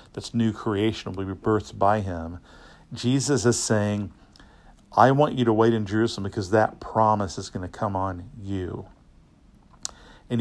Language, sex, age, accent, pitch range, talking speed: English, male, 50-69, American, 105-120 Hz, 160 wpm